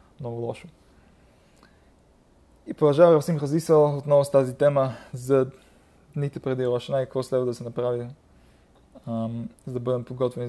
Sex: male